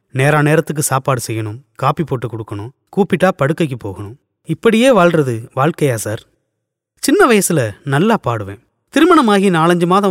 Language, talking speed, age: Tamil, 125 wpm, 30-49